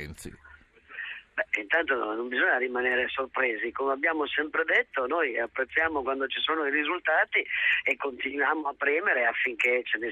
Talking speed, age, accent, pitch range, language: 150 wpm, 40-59, native, 115-135 Hz, Italian